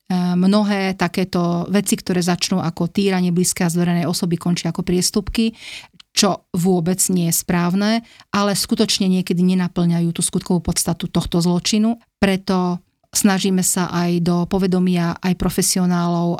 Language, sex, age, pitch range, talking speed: Slovak, female, 40-59, 175-195 Hz, 130 wpm